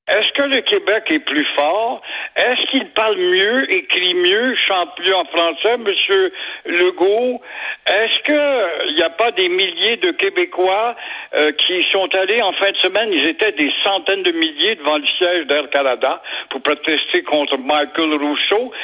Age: 60-79